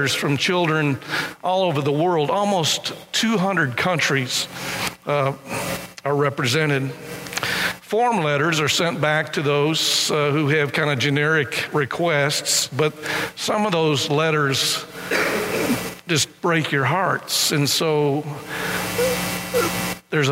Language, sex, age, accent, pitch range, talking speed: English, male, 50-69, American, 140-175 Hz, 110 wpm